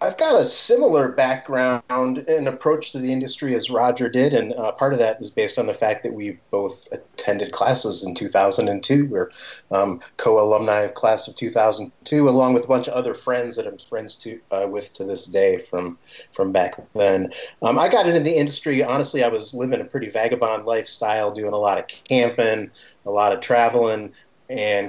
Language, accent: English, American